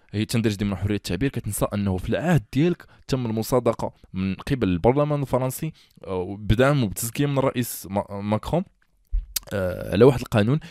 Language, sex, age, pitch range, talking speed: Arabic, male, 20-39, 105-135 Hz, 145 wpm